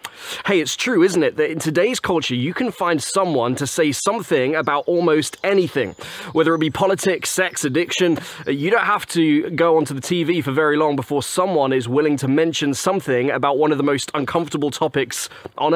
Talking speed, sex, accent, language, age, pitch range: 195 wpm, male, British, English, 20-39, 135-175 Hz